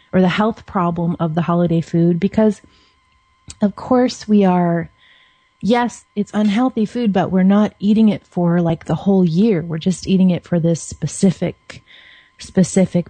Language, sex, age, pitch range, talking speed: English, female, 30-49, 170-200 Hz, 160 wpm